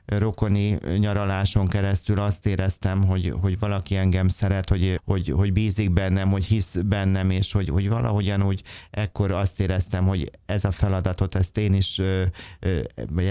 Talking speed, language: 150 wpm, Hungarian